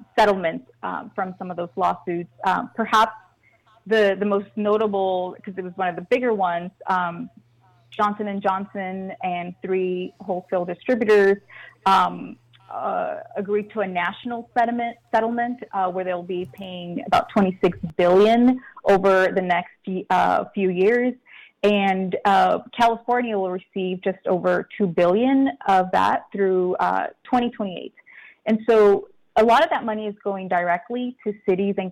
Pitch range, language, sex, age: 185-220 Hz, English, female, 30-49